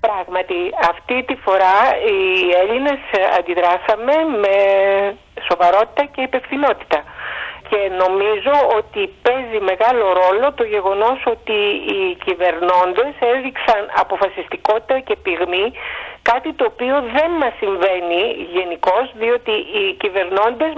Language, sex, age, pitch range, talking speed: Greek, female, 50-69, 195-285 Hz, 105 wpm